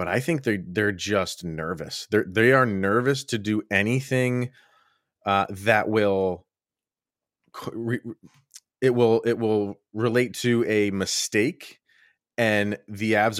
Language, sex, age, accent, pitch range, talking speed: English, male, 30-49, American, 95-120 Hz, 110 wpm